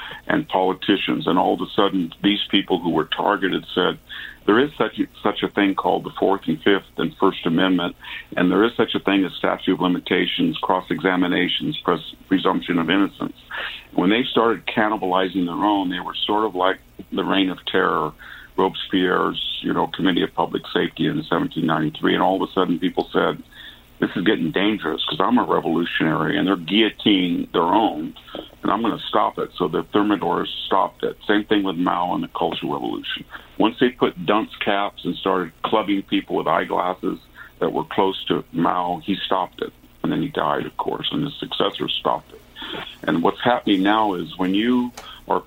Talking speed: 190 wpm